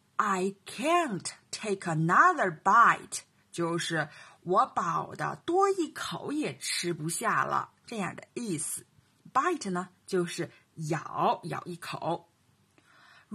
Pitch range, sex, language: 165-245 Hz, female, Chinese